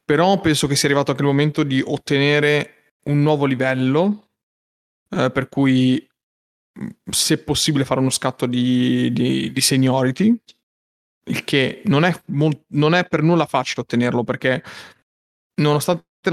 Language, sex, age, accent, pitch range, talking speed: Italian, male, 30-49, native, 130-150 Hz, 140 wpm